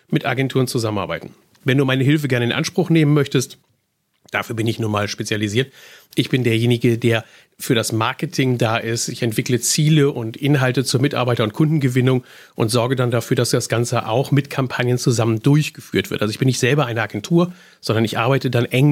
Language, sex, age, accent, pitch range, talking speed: German, male, 40-59, German, 120-155 Hz, 195 wpm